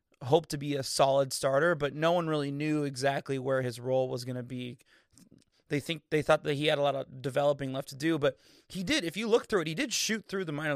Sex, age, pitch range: male, 20-39, 135-165 Hz